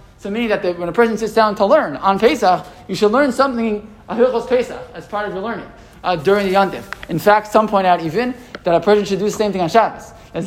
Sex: male